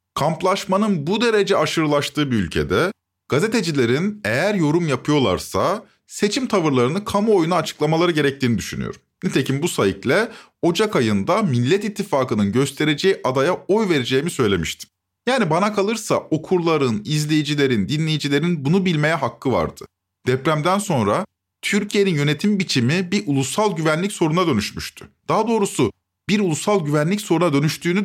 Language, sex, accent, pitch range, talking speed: Turkish, male, native, 140-200 Hz, 120 wpm